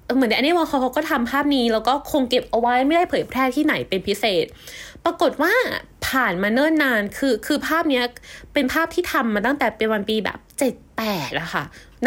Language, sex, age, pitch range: Thai, female, 20-39, 225-315 Hz